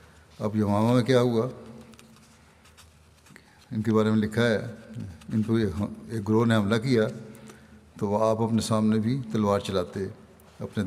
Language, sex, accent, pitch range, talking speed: English, male, Indian, 95-110 Hz, 140 wpm